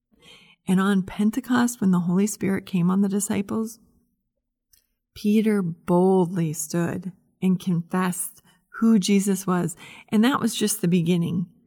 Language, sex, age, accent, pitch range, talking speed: English, female, 30-49, American, 180-220 Hz, 130 wpm